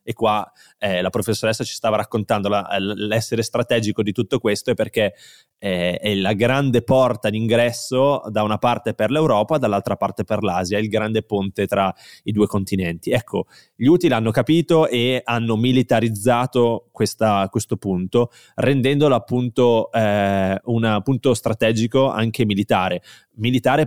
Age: 20-39